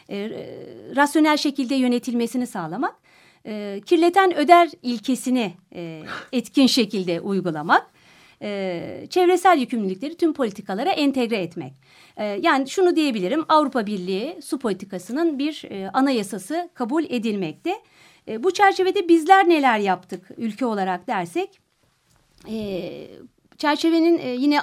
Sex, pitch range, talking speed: female, 195-310 Hz, 110 wpm